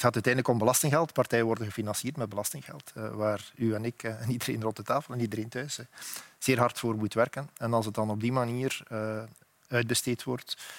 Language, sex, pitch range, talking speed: Dutch, male, 115-135 Hz, 200 wpm